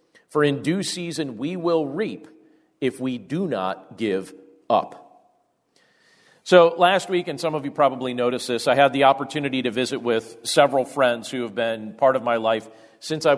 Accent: American